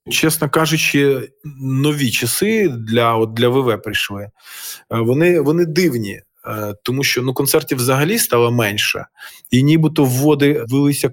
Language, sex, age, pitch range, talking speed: Ukrainian, male, 20-39, 110-150 Hz, 120 wpm